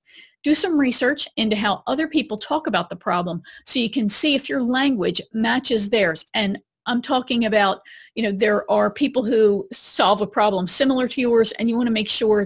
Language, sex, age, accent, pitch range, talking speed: English, female, 40-59, American, 215-265 Hz, 200 wpm